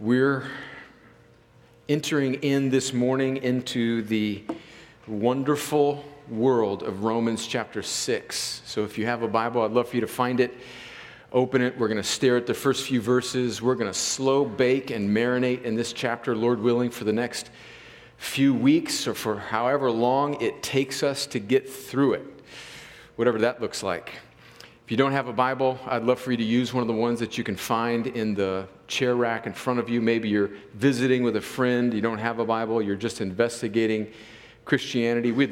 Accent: American